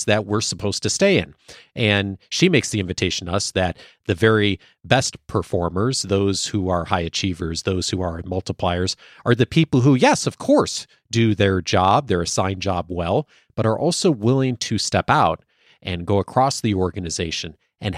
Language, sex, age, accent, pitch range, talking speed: English, male, 40-59, American, 90-130 Hz, 180 wpm